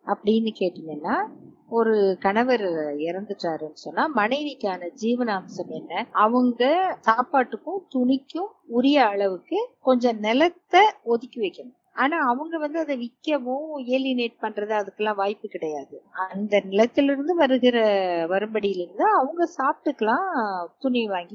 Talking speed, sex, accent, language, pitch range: 90 wpm, female, native, Tamil, 200-275 Hz